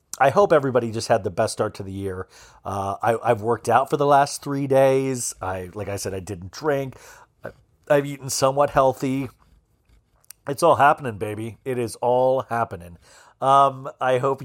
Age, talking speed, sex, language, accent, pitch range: 40-59, 185 wpm, male, English, American, 120-155 Hz